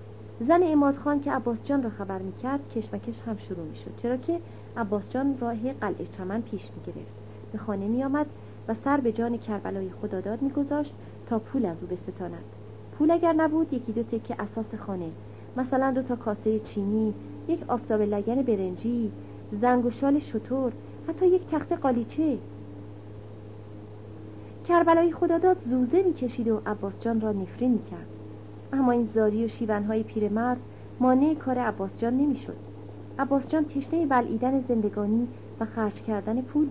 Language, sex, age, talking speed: Persian, female, 30-49, 150 wpm